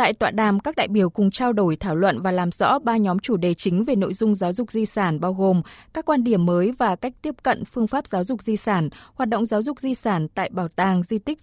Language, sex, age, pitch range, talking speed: Vietnamese, female, 20-39, 190-245 Hz, 280 wpm